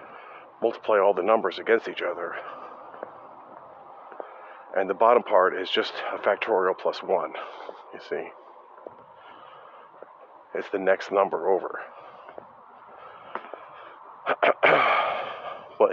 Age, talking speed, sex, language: 40-59, 95 wpm, male, English